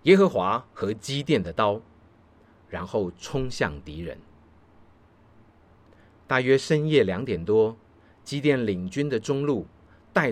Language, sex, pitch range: Chinese, male, 90-135 Hz